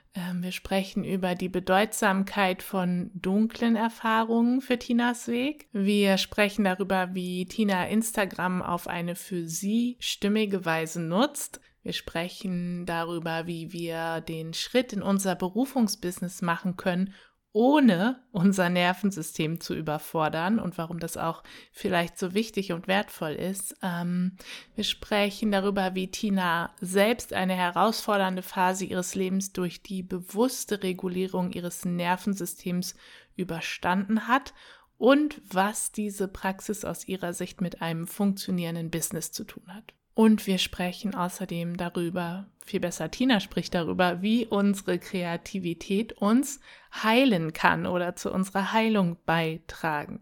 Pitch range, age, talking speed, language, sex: 180-215 Hz, 20-39, 125 wpm, German, female